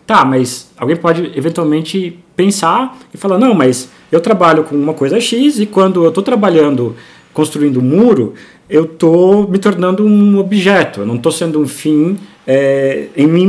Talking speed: 175 wpm